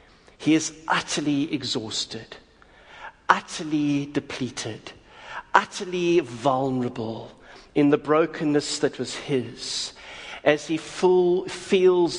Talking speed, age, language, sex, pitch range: 85 wpm, 50-69, English, male, 125-150 Hz